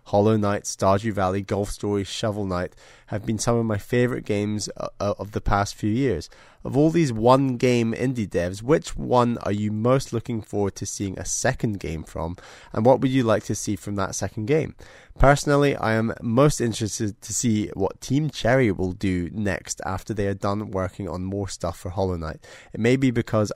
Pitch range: 95-115 Hz